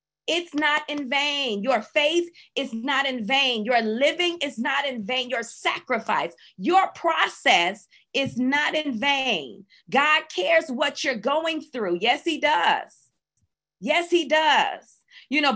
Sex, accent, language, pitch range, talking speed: female, American, English, 230-305 Hz, 145 wpm